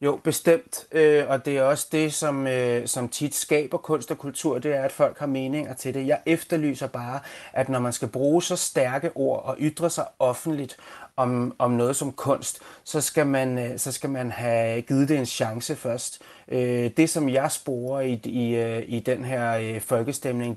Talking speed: 170 wpm